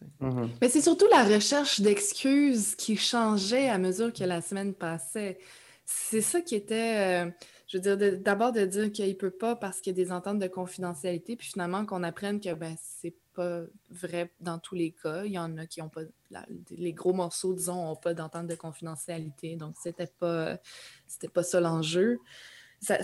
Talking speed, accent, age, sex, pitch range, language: 200 wpm, Canadian, 20-39, female, 170-205 Hz, French